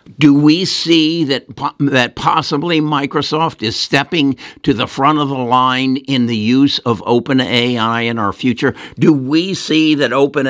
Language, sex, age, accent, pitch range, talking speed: English, male, 60-79, American, 115-145 Hz, 165 wpm